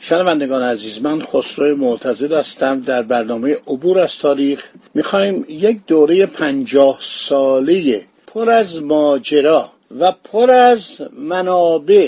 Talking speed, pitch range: 105 wpm, 130-170 Hz